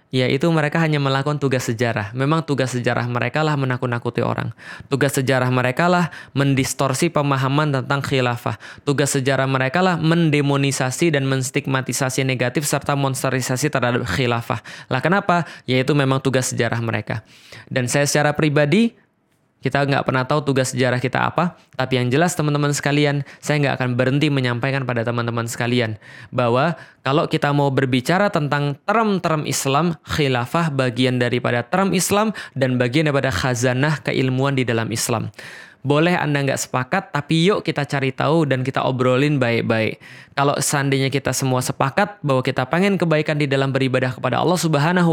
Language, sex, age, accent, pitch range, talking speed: Indonesian, male, 20-39, native, 130-150 Hz, 150 wpm